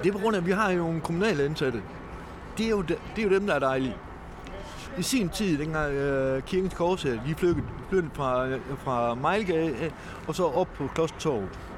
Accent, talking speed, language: native, 210 wpm, Danish